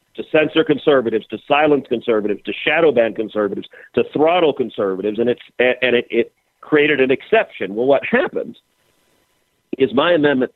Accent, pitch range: American, 125-165 Hz